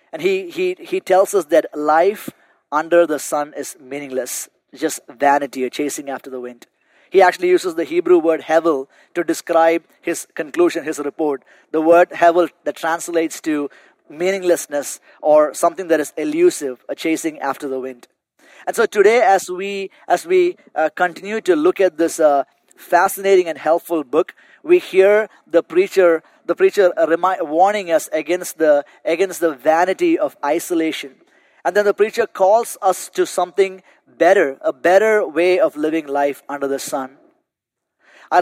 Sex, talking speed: male, 160 wpm